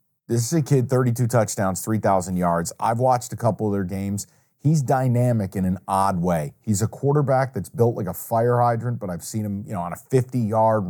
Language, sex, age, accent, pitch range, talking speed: English, male, 40-59, American, 105-135 Hz, 215 wpm